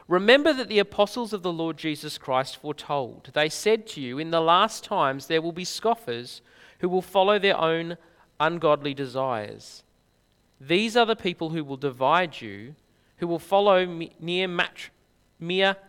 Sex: male